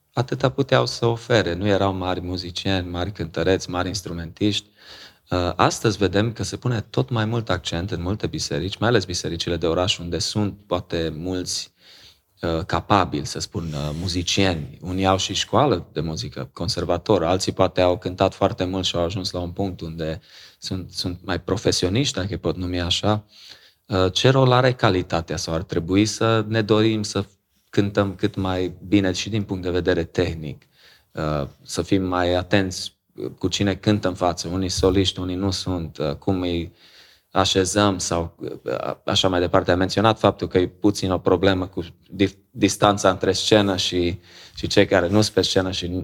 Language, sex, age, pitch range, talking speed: Romanian, male, 30-49, 90-100 Hz, 165 wpm